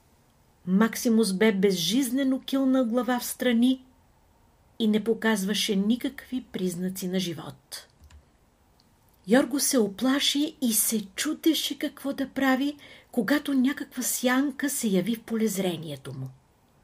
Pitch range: 200-265 Hz